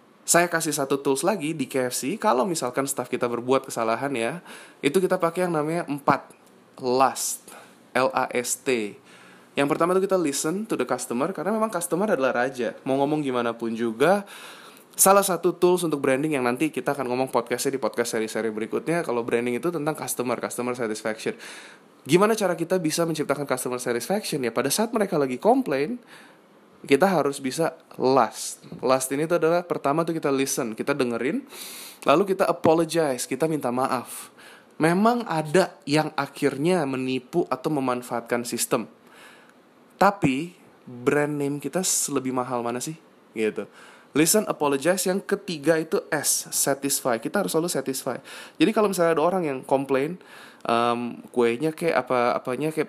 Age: 20-39